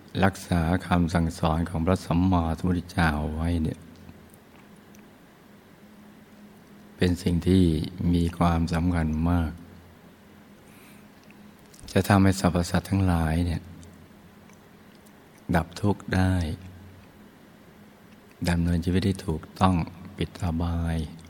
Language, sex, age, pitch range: Thai, male, 60-79, 80-95 Hz